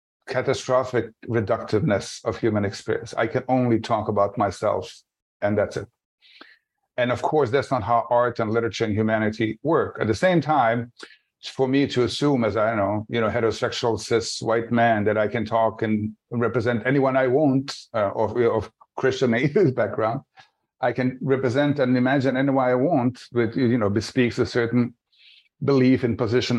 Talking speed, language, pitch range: 170 wpm, English, 115-135 Hz